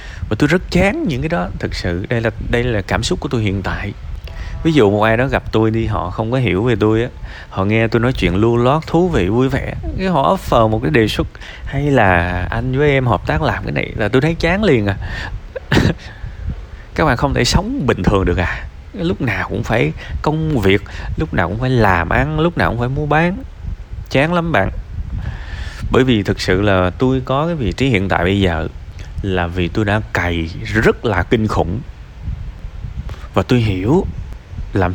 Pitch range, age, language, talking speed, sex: 90-130 Hz, 20-39, Vietnamese, 215 wpm, male